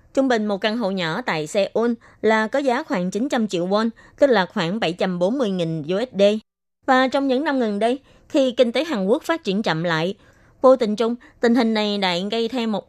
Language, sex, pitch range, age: Vietnamese, female, 190-245 Hz, 20-39